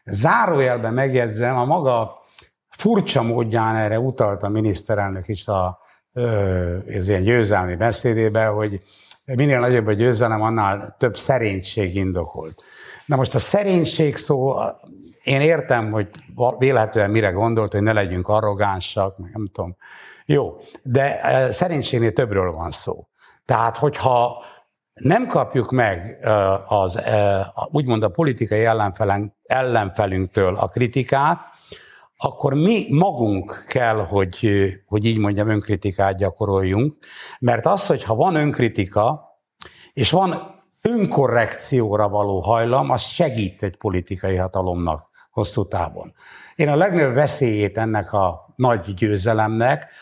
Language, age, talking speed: Hungarian, 60-79, 115 wpm